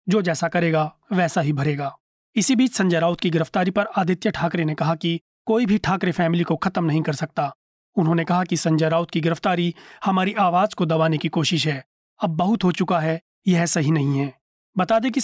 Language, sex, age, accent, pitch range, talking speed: Hindi, male, 30-49, native, 160-190 Hz, 210 wpm